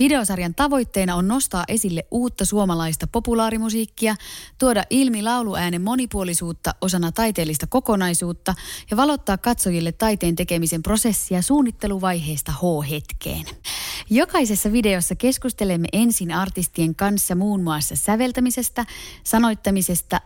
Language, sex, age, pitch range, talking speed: Finnish, female, 20-39, 165-230 Hz, 100 wpm